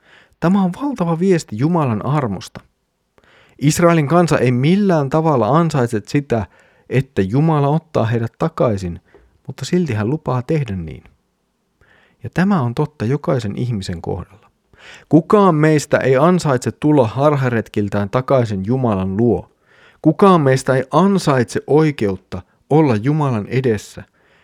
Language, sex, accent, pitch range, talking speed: Finnish, male, native, 100-140 Hz, 120 wpm